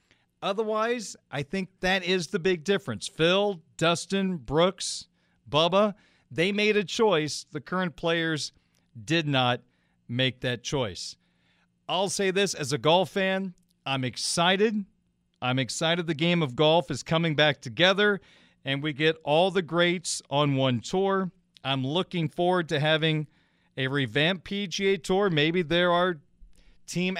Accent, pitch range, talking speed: American, 140-185 Hz, 145 wpm